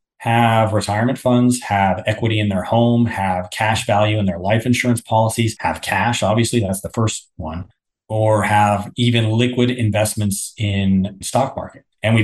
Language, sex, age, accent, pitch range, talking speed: English, male, 30-49, American, 95-120 Hz, 160 wpm